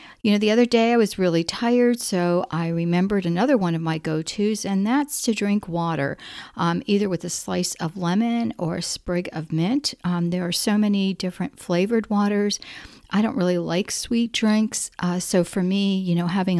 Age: 50-69